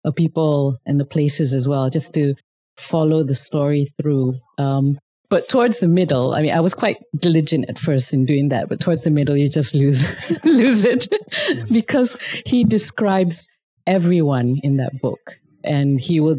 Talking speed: 175 wpm